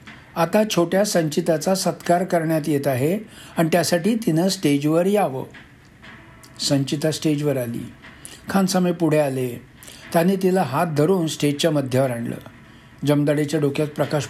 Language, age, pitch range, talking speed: Marathi, 60-79, 140-180 Hz, 100 wpm